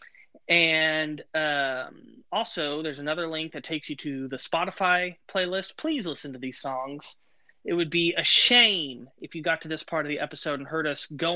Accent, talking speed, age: American, 190 wpm, 20-39